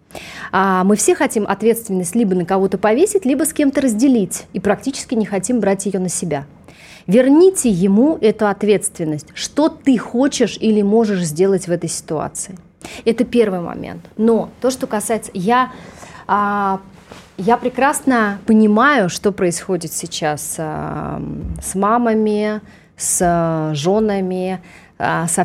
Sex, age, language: female, 30-49, Russian